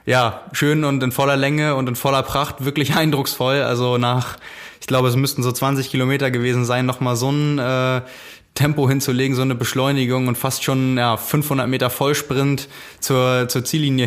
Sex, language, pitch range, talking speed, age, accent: male, German, 125-145 Hz, 180 wpm, 20-39, German